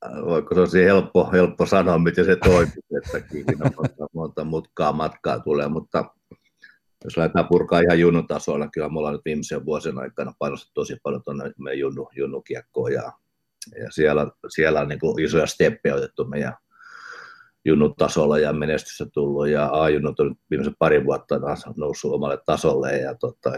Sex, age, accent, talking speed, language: male, 50-69, native, 145 wpm, Finnish